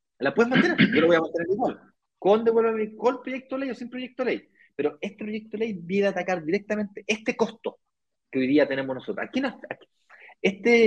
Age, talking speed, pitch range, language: 30-49, 215 wpm, 145-205 Hz, Spanish